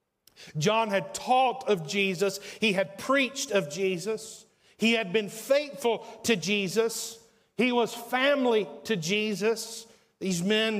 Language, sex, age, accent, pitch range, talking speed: English, male, 40-59, American, 195-225 Hz, 130 wpm